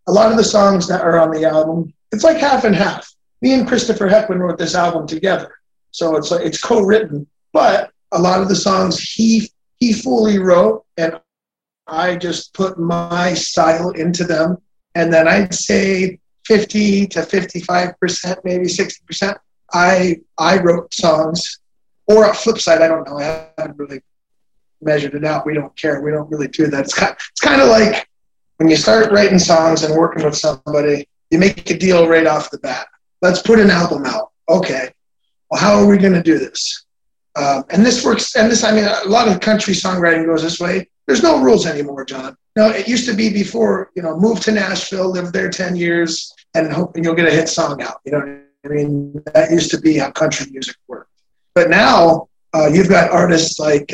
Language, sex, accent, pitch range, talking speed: English, male, American, 160-200 Hz, 200 wpm